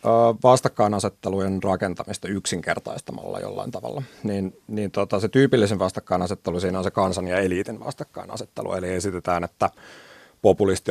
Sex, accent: male, native